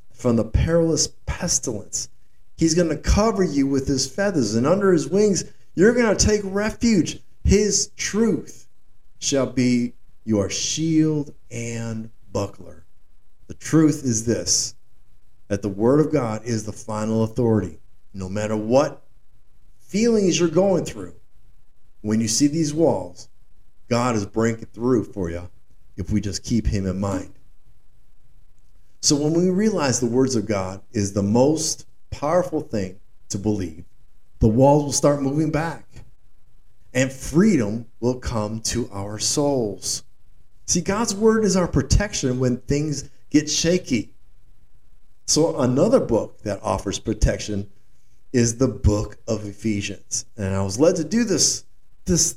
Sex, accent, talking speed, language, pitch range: male, American, 140 wpm, English, 105-155 Hz